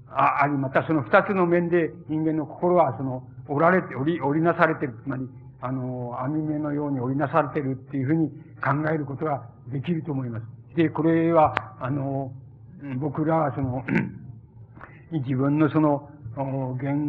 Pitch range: 125-160 Hz